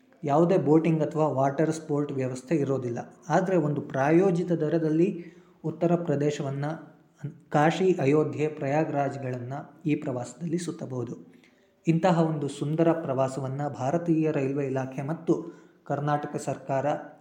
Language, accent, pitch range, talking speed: Kannada, native, 140-170 Hz, 100 wpm